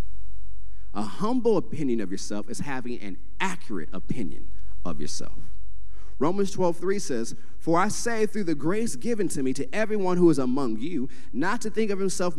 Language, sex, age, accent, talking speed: English, male, 30-49, American, 175 wpm